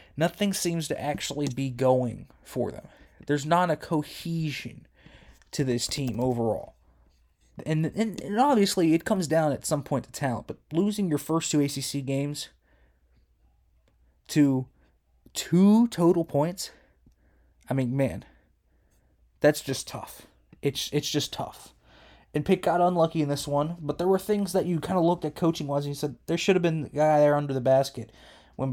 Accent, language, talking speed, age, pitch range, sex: American, English, 170 wpm, 20-39, 120-160 Hz, male